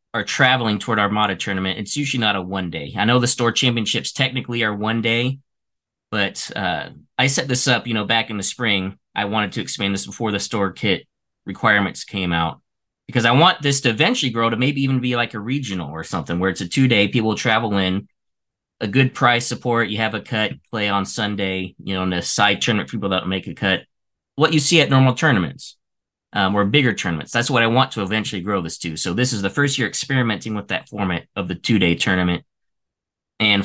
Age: 20-39